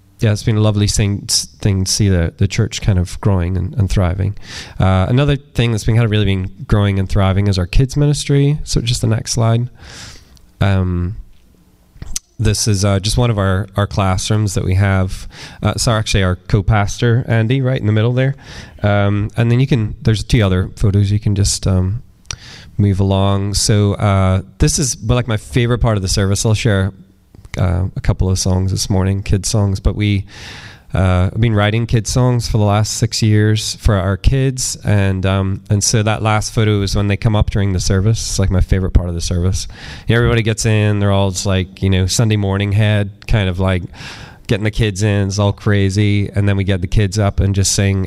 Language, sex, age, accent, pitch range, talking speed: English, male, 20-39, American, 95-110 Hz, 215 wpm